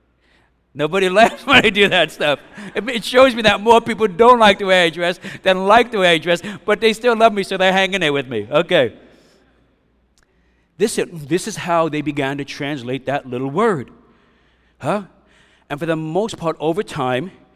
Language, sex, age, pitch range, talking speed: English, male, 50-69, 140-195 Hz, 190 wpm